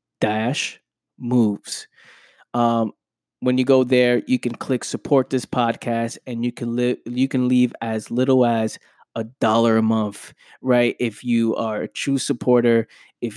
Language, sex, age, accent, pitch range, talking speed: English, male, 20-39, American, 110-125 Hz, 155 wpm